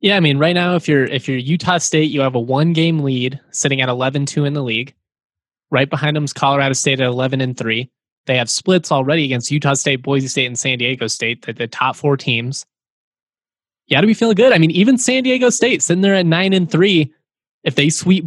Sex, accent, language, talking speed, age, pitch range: male, American, English, 220 wpm, 20-39, 125-160 Hz